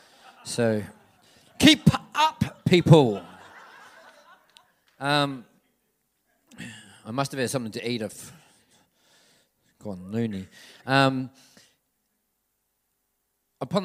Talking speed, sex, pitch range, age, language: 80 wpm, male, 115-145 Hz, 40-59, English